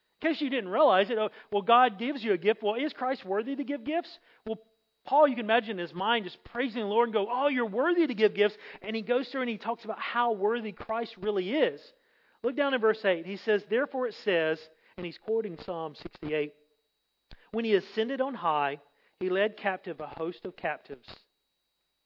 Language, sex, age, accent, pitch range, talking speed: English, male, 40-59, American, 190-255 Hz, 215 wpm